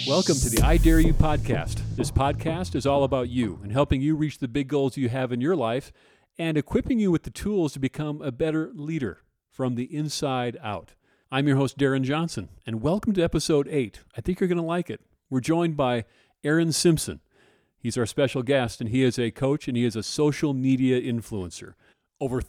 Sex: male